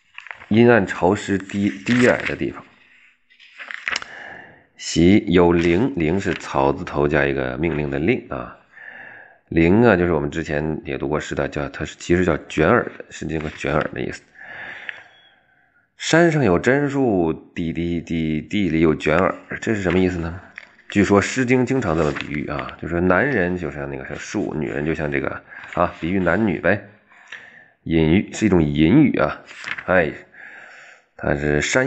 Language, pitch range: Chinese, 75-125 Hz